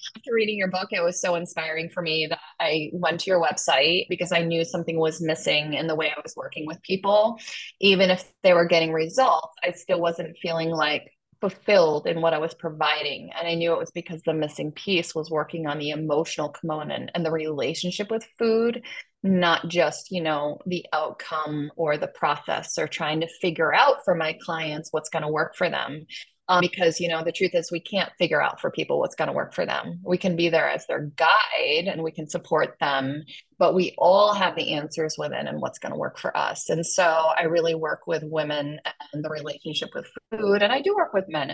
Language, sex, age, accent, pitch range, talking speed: English, female, 20-39, American, 155-180 Hz, 220 wpm